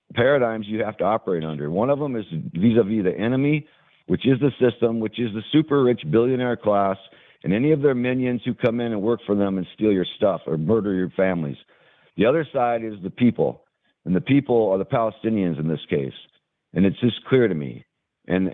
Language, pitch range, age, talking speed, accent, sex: English, 105-135 Hz, 60-79, 215 wpm, American, male